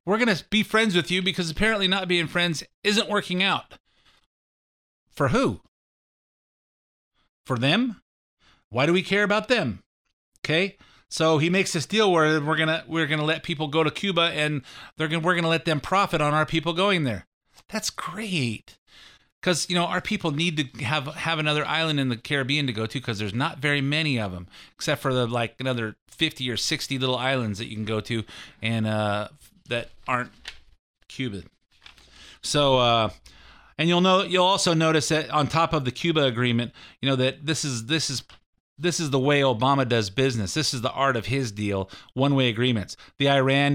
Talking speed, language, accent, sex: 190 wpm, English, American, male